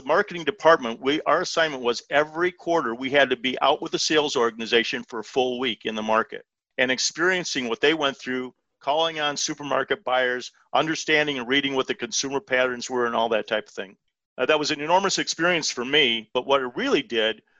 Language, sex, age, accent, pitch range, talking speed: English, male, 50-69, American, 125-155 Hz, 205 wpm